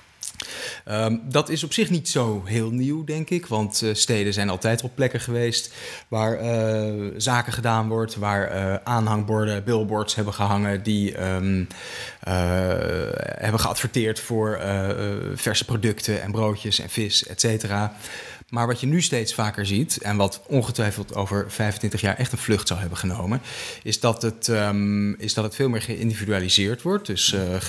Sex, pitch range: male, 100-115 Hz